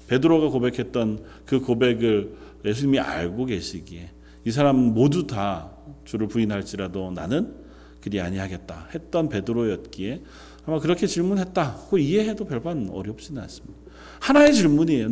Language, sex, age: Korean, male, 40-59